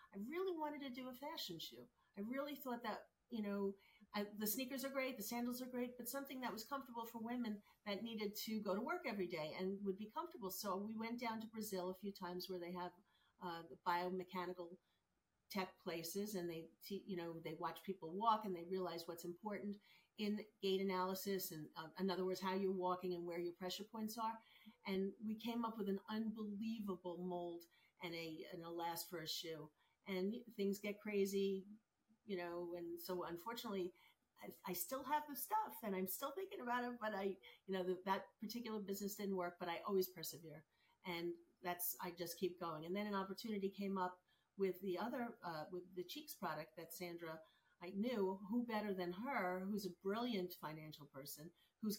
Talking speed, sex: 200 wpm, female